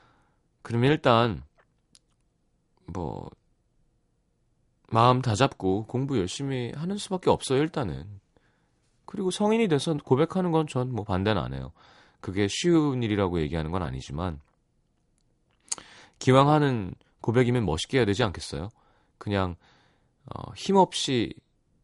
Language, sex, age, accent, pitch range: Korean, male, 30-49, native, 90-135 Hz